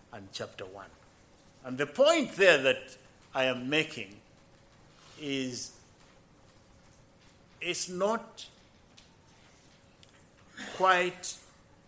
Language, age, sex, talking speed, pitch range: English, 50-69, male, 70 wpm, 120-160 Hz